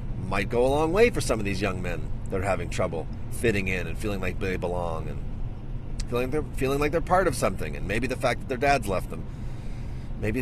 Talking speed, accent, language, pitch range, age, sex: 235 wpm, American, English, 100-120 Hz, 30-49, male